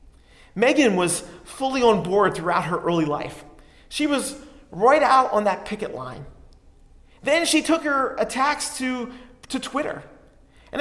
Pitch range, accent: 200-275 Hz, American